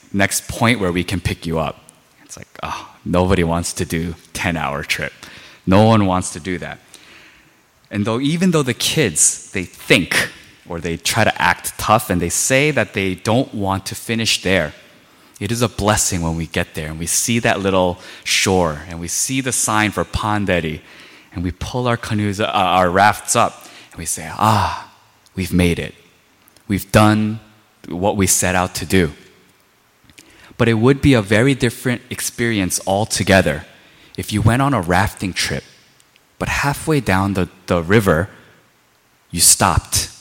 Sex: male